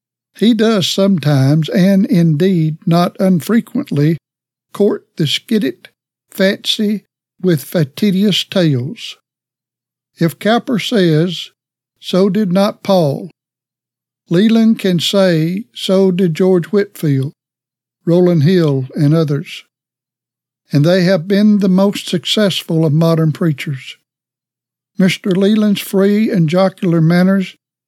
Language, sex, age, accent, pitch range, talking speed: English, male, 60-79, American, 150-195 Hz, 105 wpm